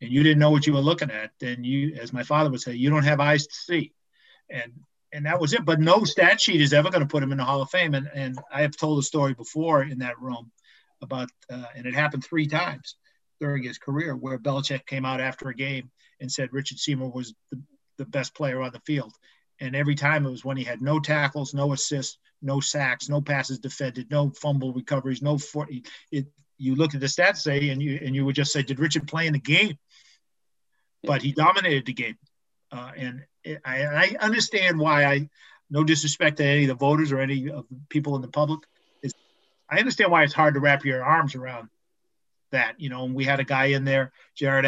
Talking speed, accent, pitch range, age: 230 wpm, American, 130-150 Hz, 50-69